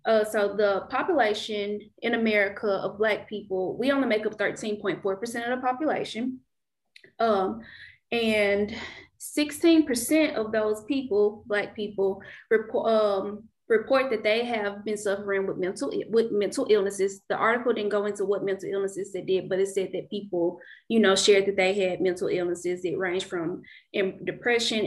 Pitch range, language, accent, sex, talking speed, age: 195-235 Hz, English, American, female, 160 wpm, 20-39